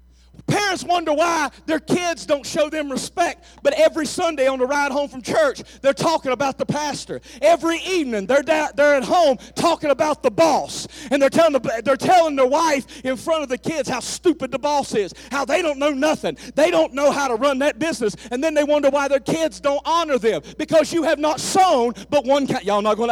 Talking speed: 220 wpm